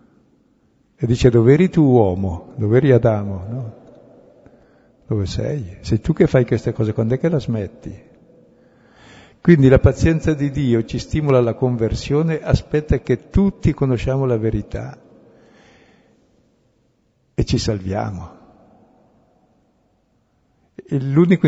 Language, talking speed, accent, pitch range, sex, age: Italian, 120 wpm, native, 105-135 Hz, male, 60-79